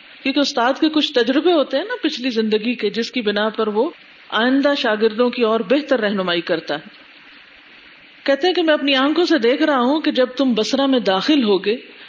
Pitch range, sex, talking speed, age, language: 200-280 Hz, female, 200 wpm, 50-69, Urdu